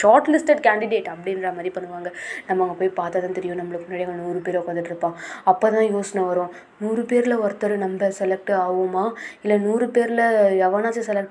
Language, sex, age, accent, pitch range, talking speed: Tamil, female, 20-39, native, 195-245 Hz, 170 wpm